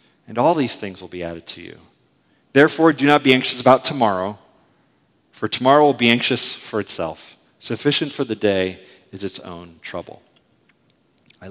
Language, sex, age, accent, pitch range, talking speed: English, male, 40-59, American, 100-125 Hz, 165 wpm